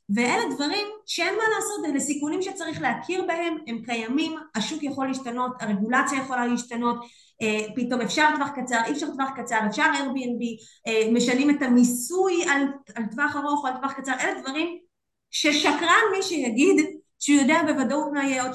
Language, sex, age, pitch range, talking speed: Hebrew, female, 20-39, 235-315 Hz, 155 wpm